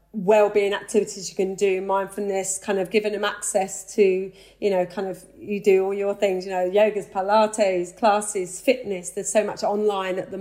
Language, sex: English, female